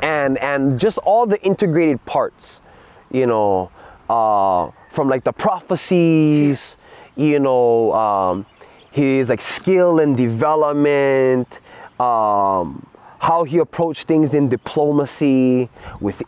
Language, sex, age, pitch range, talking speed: English, male, 20-39, 120-165 Hz, 110 wpm